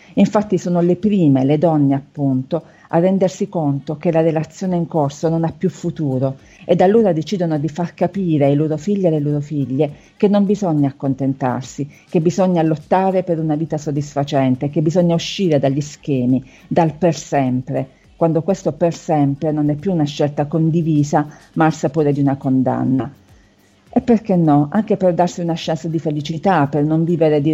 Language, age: Italian, 50-69